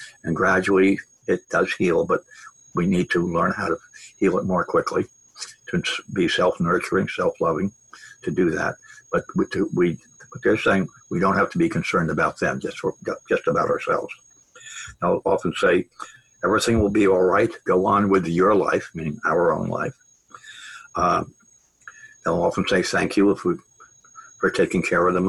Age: 60-79